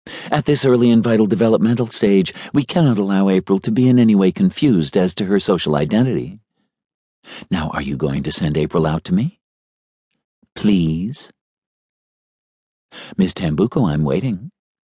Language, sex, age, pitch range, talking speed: English, male, 50-69, 95-120 Hz, 150 wpm